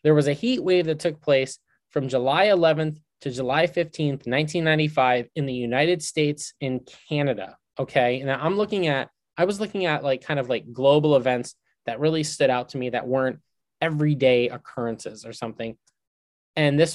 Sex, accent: male, American